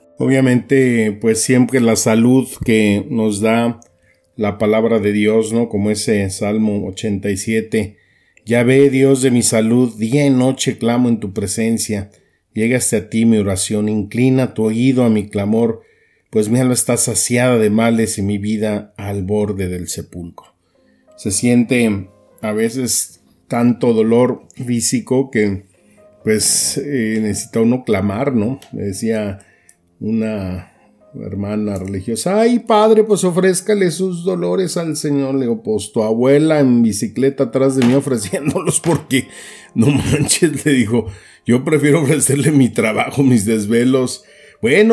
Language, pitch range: Spanish, 105-130 Hz